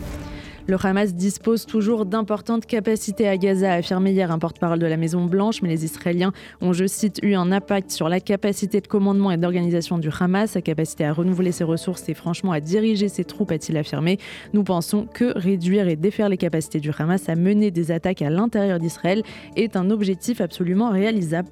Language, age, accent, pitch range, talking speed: Italian, 20-39, French, 170-205 Hz, 200 wpm